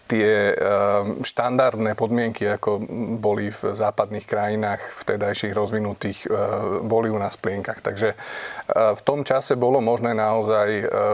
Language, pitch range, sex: Slovak, 105-115 Hz, male